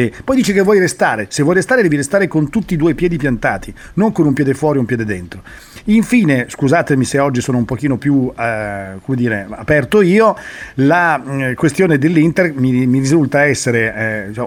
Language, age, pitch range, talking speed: Italian, 40-59, 125-175 Hz, 200 wpm